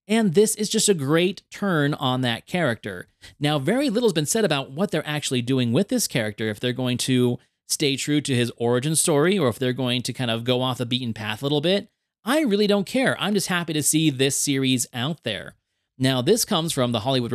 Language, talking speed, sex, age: English, 235 wpm, male, 30-49